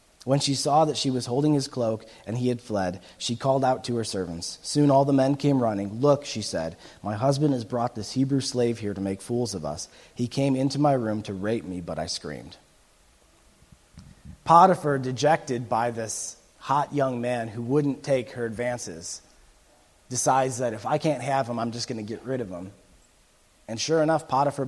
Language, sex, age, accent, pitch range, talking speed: English, male, 30-49, American, 115-145 Hz, 200 wpm